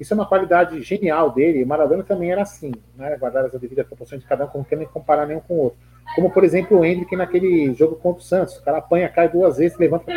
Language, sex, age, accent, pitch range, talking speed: Portuguese, male, 30-49, Brazilian, 135-180 Hz, 265 wpm